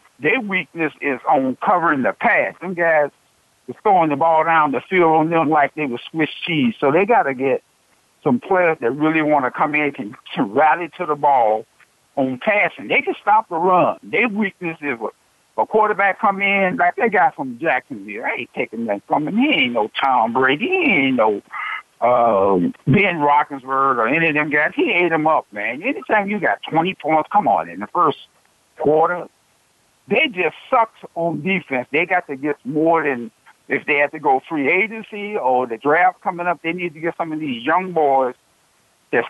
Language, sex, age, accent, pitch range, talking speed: English, male, 60-79, American, 145-195 Hz, 200 wpm